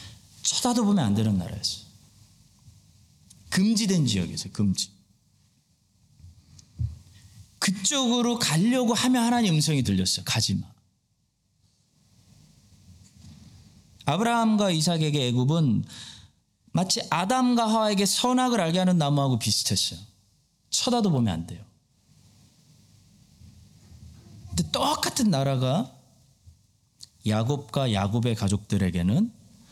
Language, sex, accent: Korean, male, native